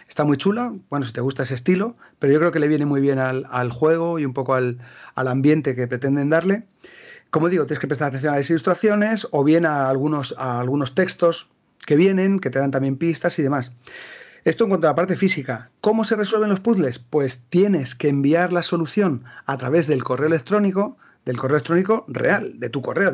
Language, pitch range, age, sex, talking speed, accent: Spanish, 135-185 Hz, 40-59, male, 215 wpm, Spanish